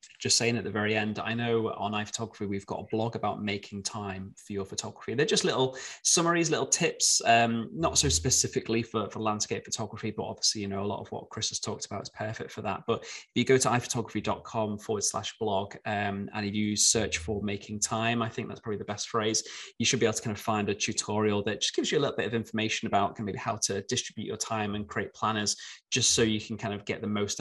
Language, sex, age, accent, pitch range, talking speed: English, male, 20-39, British, 105-120 Hz, 240 wpm